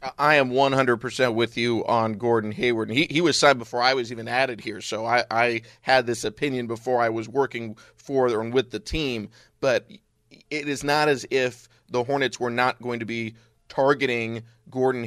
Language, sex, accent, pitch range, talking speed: English, male, American, 115-140 Hz, 190 wpm